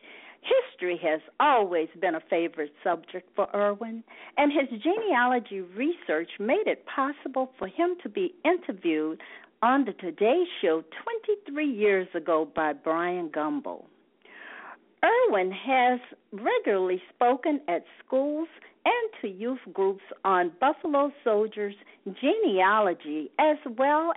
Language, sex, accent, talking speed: English, female, American, 115 wpm